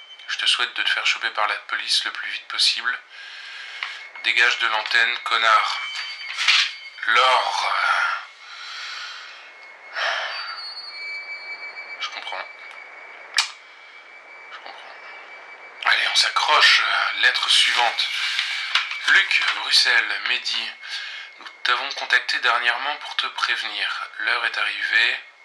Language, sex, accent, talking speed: French, male, French, 95 wpm